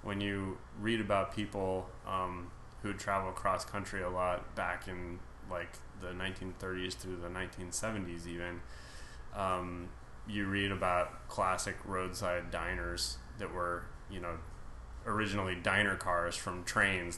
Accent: American